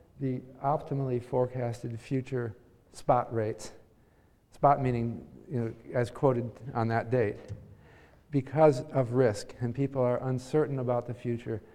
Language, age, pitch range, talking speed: English, 50-69, 120-155 Hz, 130 wpm